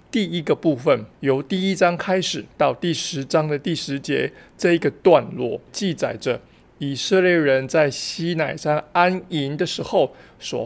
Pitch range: 140-175 Hz